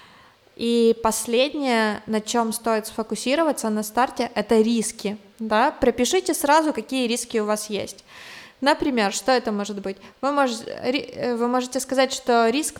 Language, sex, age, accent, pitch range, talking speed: Russian, female, 20-39, native, 215-235 Hz, 140 wpm